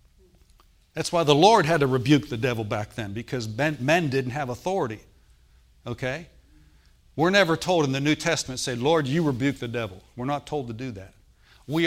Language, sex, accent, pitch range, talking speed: English, male, American, 110-155 Hz, 190 wpm